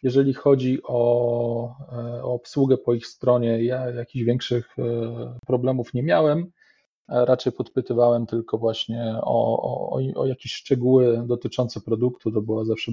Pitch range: 120-135 Hz